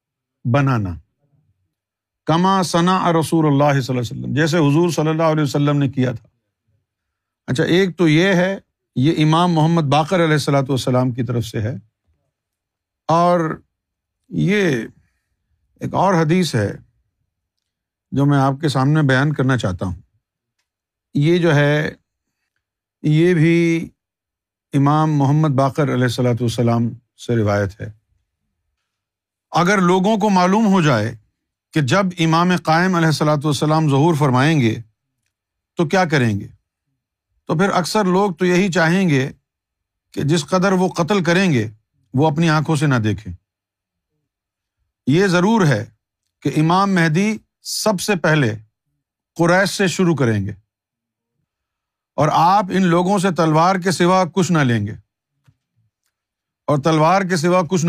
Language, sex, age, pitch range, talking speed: Urdu, male, 50-69, 110-170 Hz, 140 wpm